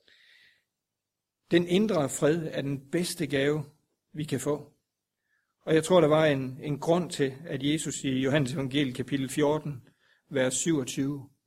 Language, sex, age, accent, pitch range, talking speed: Danish, male, 60-79, native, 130-155 Hz, 145 wpm